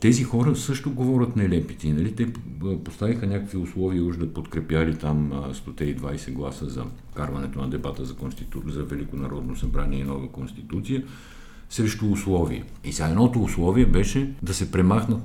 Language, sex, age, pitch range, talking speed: Bulgarian, male, 50-69, 80-105 Hz, 140 wpm